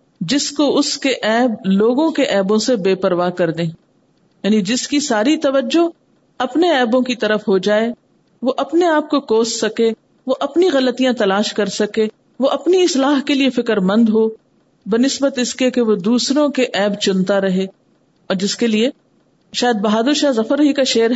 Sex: female